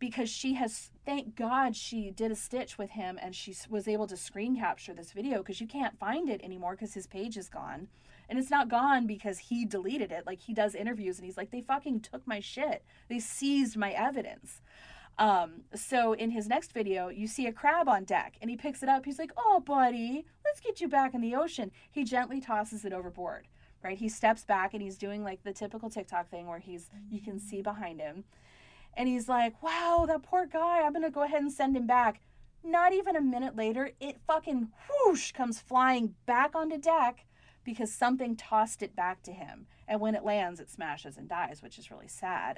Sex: female